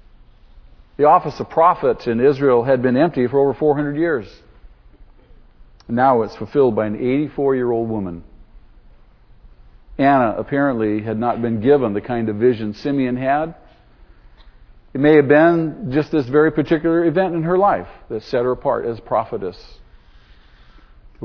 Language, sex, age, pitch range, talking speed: English, male, 50-69, 95-135 Hz, 140 wpm